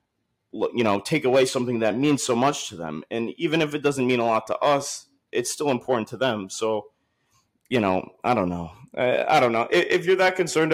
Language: English